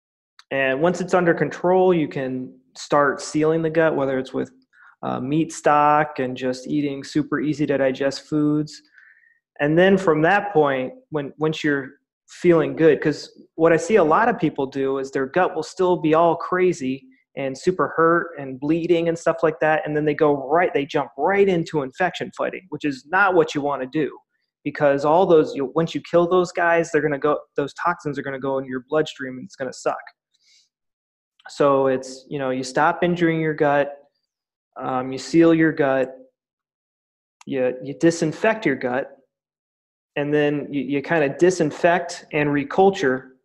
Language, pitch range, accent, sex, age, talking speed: English, 140-170 Hz, American, male, 30-49, 185 wpm